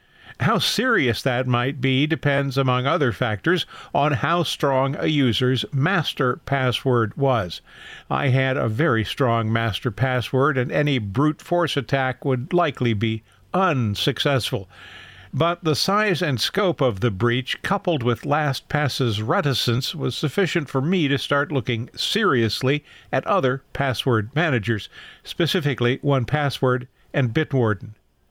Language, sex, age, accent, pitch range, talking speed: English, male, 50-69, American, 120-155 Hz, 130 wpm